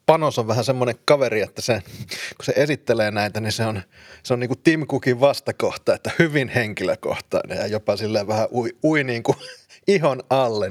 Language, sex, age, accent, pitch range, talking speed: Finnish, male, 30-49, native, 105-135 Hz, 190 wpm